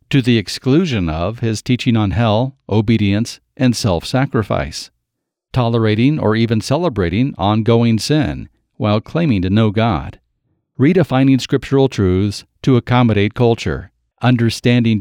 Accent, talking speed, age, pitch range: American, 115 wpm, 50-69, 100-125 Hz